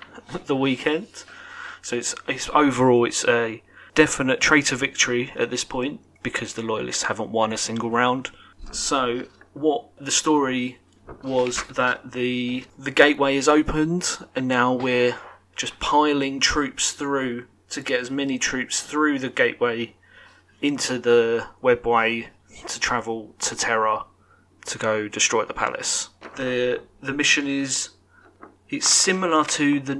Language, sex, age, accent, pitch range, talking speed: English, male, 30-49, British, 120-150 Hz, 135 wpm